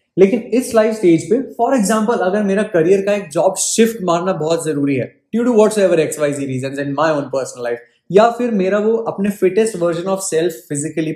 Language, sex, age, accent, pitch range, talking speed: Hindi, male, 20-39, native, 145-205 Hz, 190 wpm